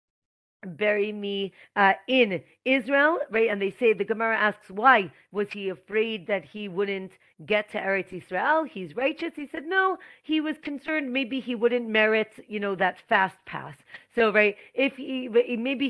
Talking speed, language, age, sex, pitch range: 170 wpm, English, 40-59, female, 190-245 Hz